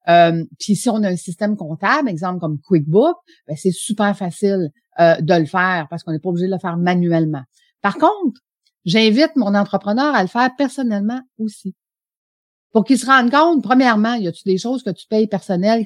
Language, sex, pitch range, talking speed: French, female, 170-230 Hz, 195 wpm